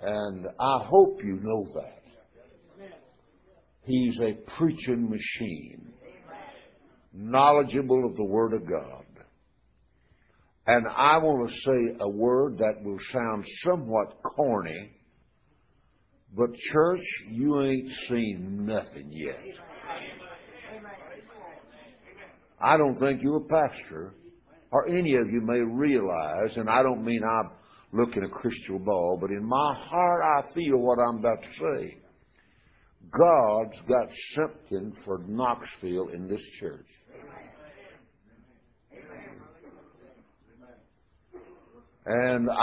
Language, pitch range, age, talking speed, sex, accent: English, 105-135 Hz, 60-79, 110 wpm, male, American